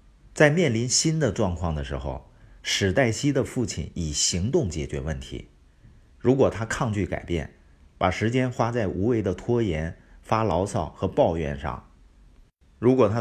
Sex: male